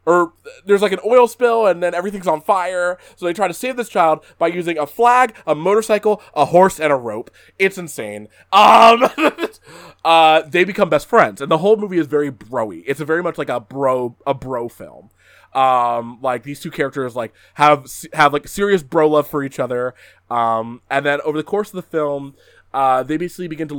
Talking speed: 210 wpm